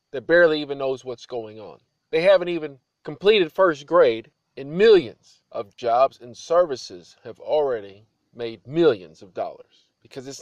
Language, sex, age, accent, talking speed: English, male, 40-59, American, 155 wpm